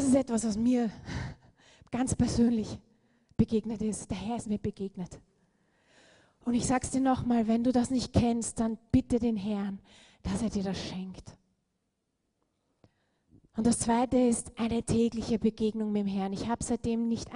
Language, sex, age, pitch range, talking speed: German, female, 30-49, 205-245 Hz, 160 wpm